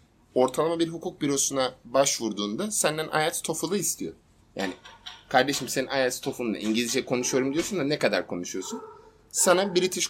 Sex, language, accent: male, Turkish, native